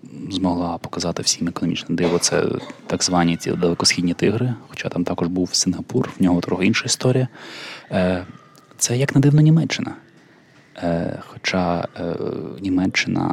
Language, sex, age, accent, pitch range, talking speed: Ukrainian, male, 20-39, native, 90-105 Hz, 125 wpm